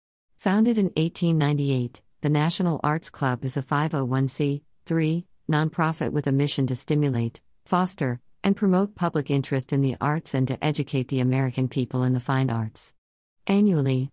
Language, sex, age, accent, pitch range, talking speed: English, female, 50-69, American, 130-170 Hz, 150 wpm